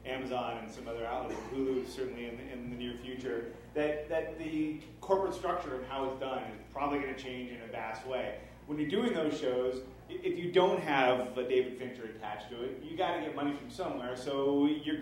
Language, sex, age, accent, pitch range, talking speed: English, male, 30-49, American, 125-155 Hz, 220 wpm